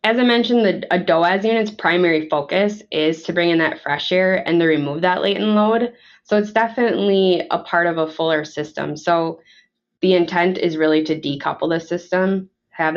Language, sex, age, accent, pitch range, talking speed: English, female, 20-39, American, 160-195 Hz, 185 wpm